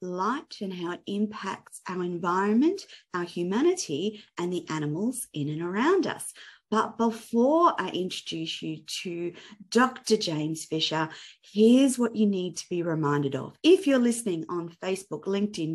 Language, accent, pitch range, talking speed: English, Australian, 170-230 Hz, 150 wpm